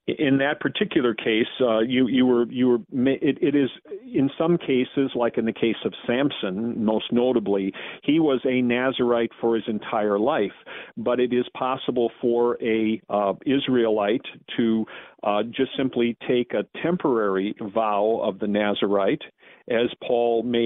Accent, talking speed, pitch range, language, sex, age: American, 155 wpm, 110-130 Hz, English, male, 50-69